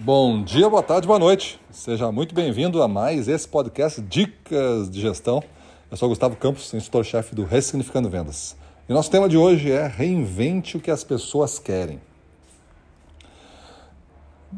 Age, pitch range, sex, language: 40-59, 105-135 Hz, male, Portuguese